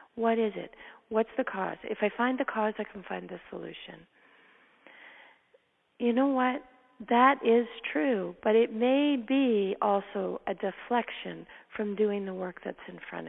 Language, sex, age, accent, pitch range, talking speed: English, female, 40-59, American, 210-260 Hz, 165 wpm